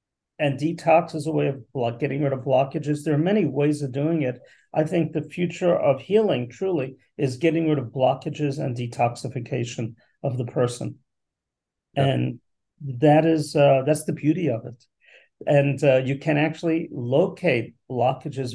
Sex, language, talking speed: male, Swedish, 165 wpm